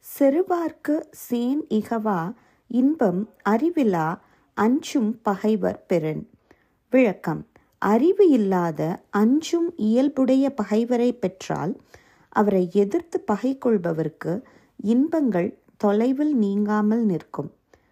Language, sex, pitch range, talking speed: Tamil, female, 205-270 Hz, 75 wpm